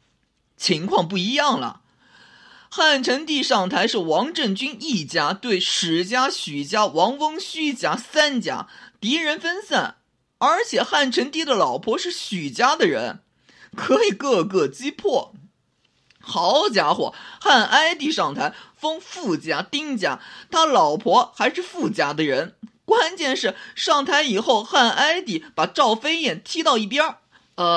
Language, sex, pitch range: Chinese, male, 220-305 Hz